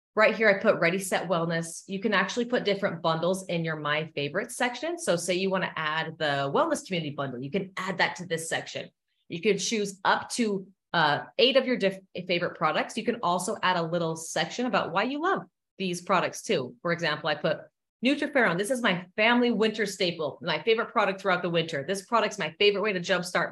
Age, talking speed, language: 30-49, 215 wpm, English